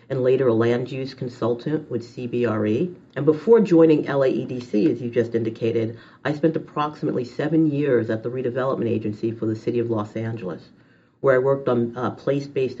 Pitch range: 120-155 Hz